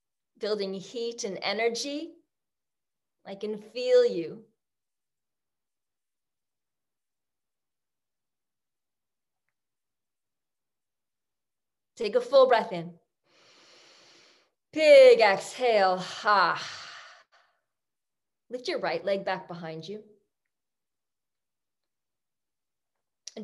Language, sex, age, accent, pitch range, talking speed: English, female, 30-49, American, 195-280 Hz, 60 wpm